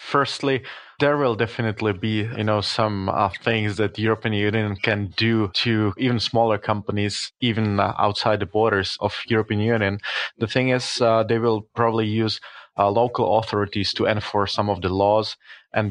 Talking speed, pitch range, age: 175 wpm, 105-115 Hz, 20-39